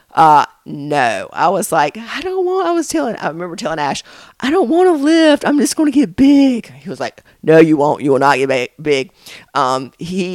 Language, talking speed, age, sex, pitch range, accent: English, 225 wpm, 40-59, female, 140-175 Hz, American